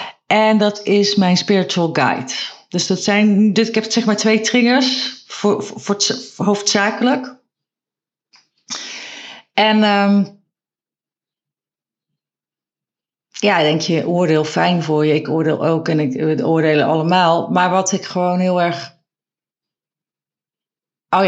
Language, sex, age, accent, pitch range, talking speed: Dutch, female, 40-59, Dutch, 175-220 Hz, 120 wpm